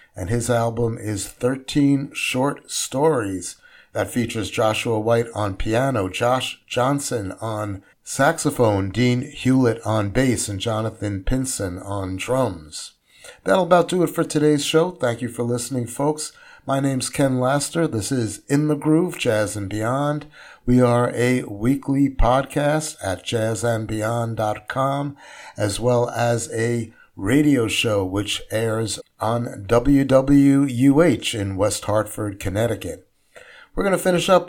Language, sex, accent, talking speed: English, male, American, 130 wpm